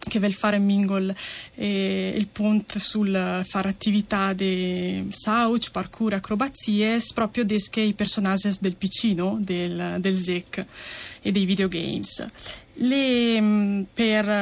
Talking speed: 130 wpm